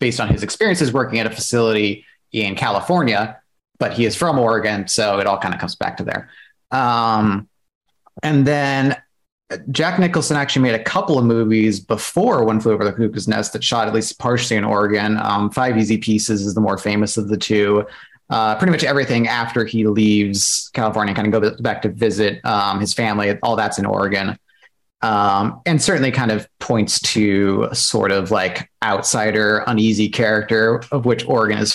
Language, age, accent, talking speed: English, 30-49, American, 185 wpm